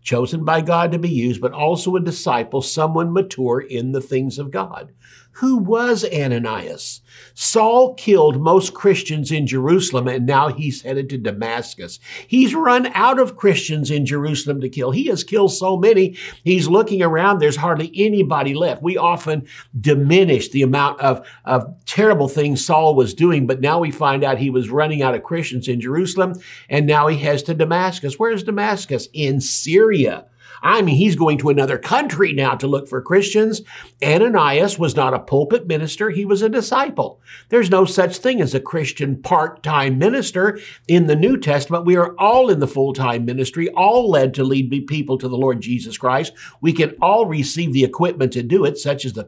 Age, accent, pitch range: 60-79, American, 130-185 Hz